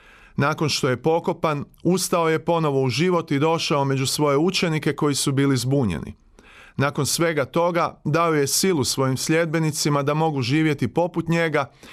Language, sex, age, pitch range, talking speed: Croatian, male, 30-49, 135-170 Hz, 155 wpm